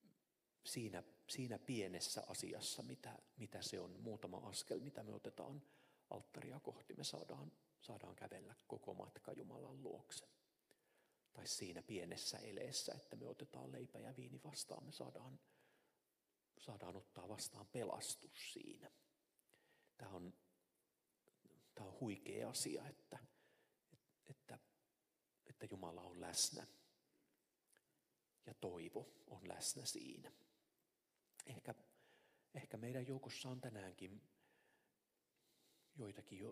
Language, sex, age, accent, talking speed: Finnish, male, 40-59, native, 105 wpm